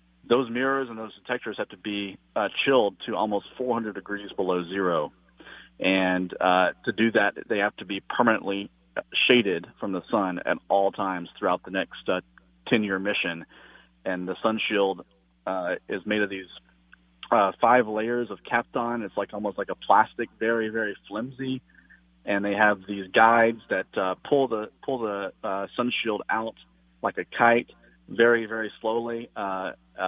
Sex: male